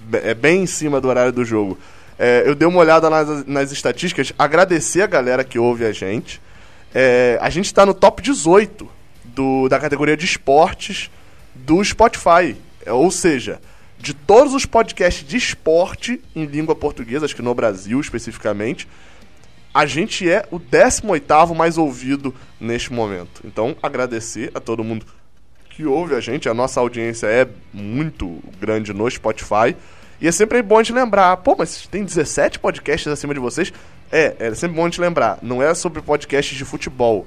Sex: male